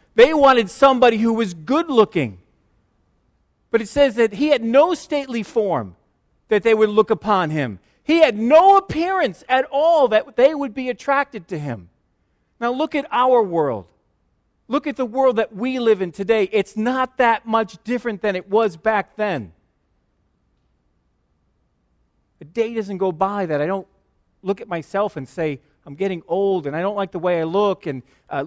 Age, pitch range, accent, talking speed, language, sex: 40-59, 165-230 Hz, American, 175 wpm, English, male